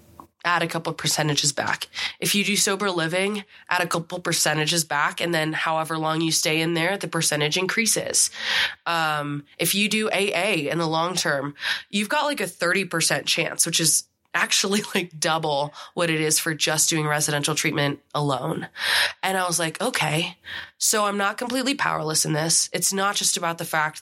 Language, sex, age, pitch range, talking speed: English, female, 20-39, 150-180 Hz, 180 wpm